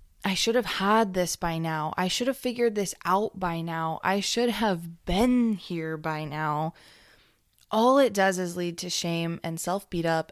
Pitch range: 170-215 Hz